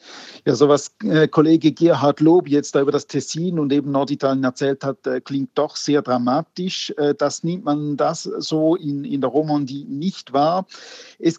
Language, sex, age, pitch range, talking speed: German, male, 50-69, 145-180 Hz, 170 wpm